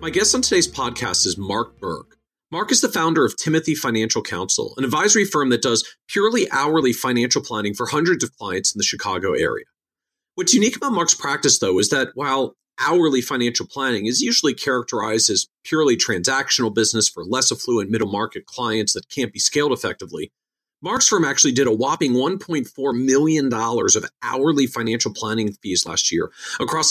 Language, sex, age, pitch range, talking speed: English, male, 40-59, 110-155 Hz, 175 wpm